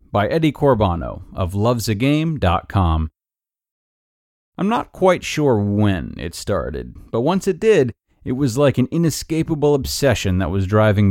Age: 30-49